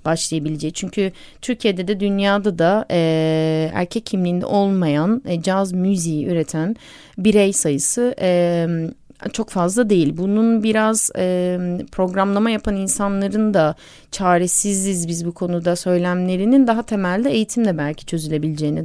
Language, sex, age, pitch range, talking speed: Turkish, female, 30-49, 165-220 Hz, 120 wpm